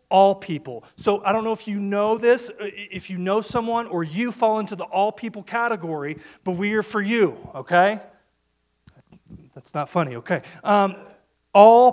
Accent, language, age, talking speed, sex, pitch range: American, English, 30-49, 170 wpm, male, 110-185 Hz